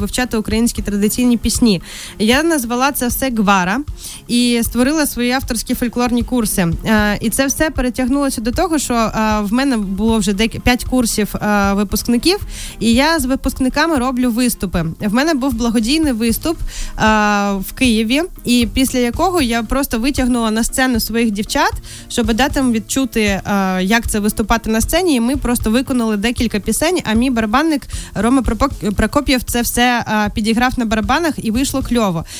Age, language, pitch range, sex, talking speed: 20-39, Ukrainian, 220-270 Hz, female, 145 wpm